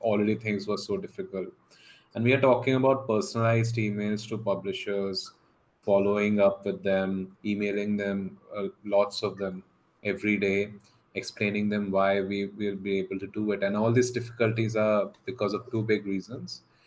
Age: 20-39